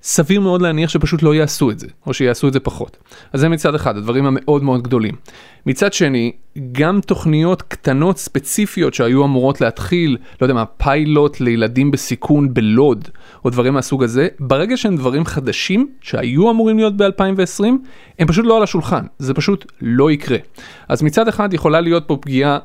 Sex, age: male, 30-49